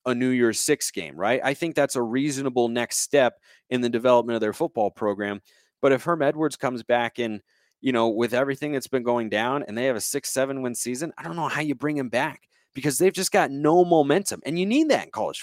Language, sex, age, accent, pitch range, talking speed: English, male, 30-49, American, 120-155 Hz, 245 wpm